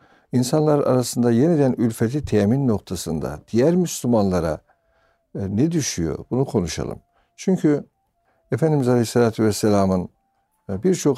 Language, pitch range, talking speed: Turkish, 95-135 Hz, 90 wpm